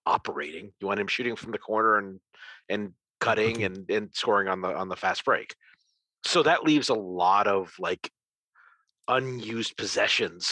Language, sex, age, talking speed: English, male, 40-59, 165 wpm